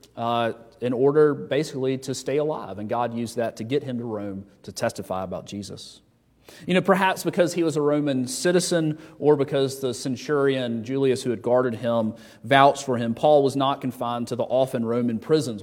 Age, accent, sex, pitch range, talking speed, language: 40-59, American, male, 120-150 Hz, 190 wpm, English